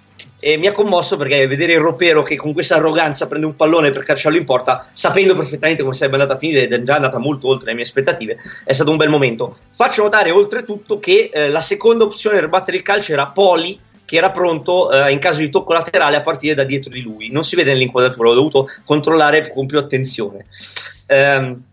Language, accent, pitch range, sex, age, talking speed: Italian, native, 135-165 Hz, male, 30-49, 220 wpm